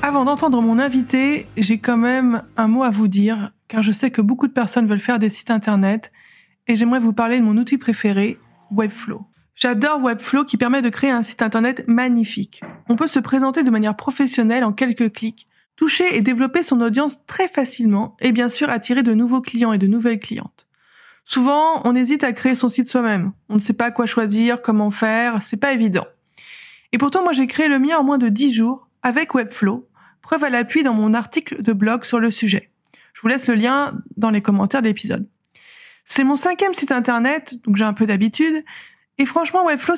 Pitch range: 225-275 Hz